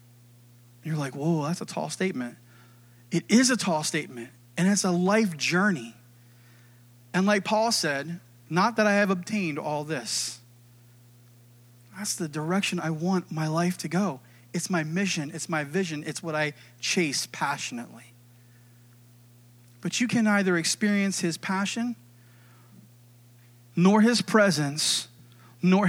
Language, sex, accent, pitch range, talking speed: English, male, American, 120-190 Hz, 135 wpm